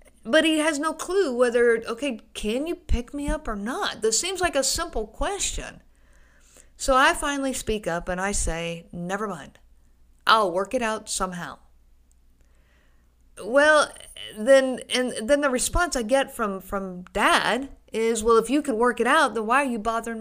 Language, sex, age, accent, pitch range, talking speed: English, female, 50-69, American, 195-275 Hz, 175 wpm